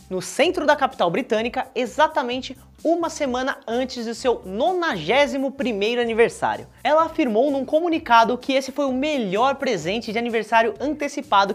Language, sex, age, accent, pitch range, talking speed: Portuguese, male, 20-39, Brazilian, 210-280 Hz, 140 wpm